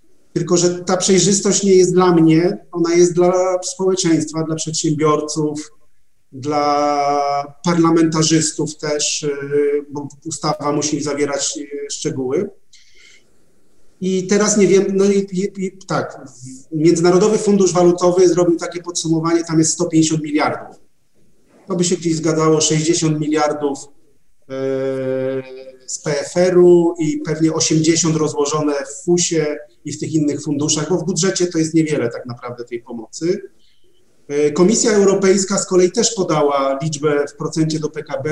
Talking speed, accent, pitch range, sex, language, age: 130 wpm, native, 150-180 Hz, male, Polish, 40-59